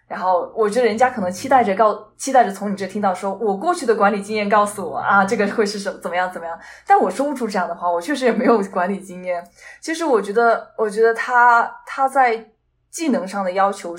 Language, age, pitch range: Chinese, 20-39, 195-245 Hz